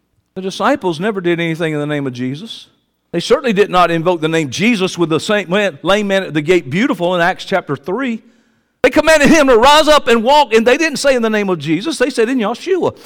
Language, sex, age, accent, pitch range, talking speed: English, male, 50-69, American, 160-250 Hz, 235 wpm